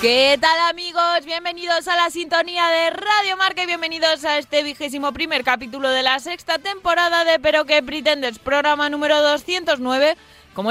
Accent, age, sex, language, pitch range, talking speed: Spanish, 20-39, female, Spanish, 255-320 Hz, 165 wpm